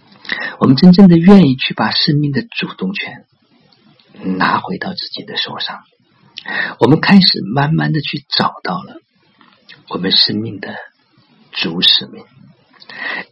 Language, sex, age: Chinese, male, 50-69